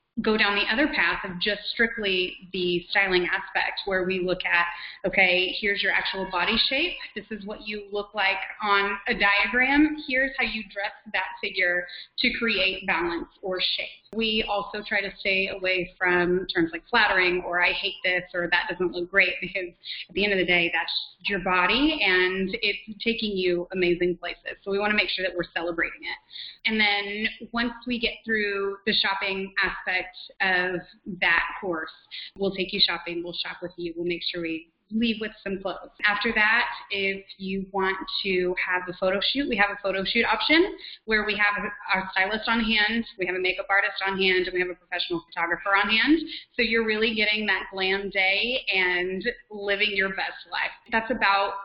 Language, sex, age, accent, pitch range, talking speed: English, female, 30-49, American, 185-220 Hz, 190 wpm